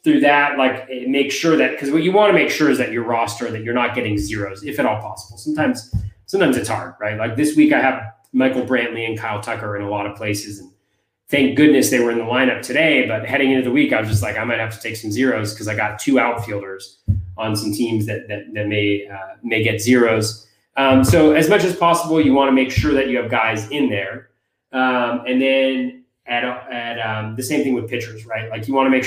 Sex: male